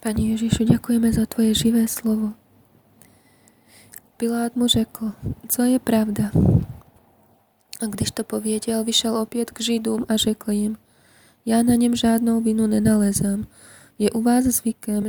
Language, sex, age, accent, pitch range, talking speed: Czech, female, 20-39, native, 200-225 Hz, 140 wpm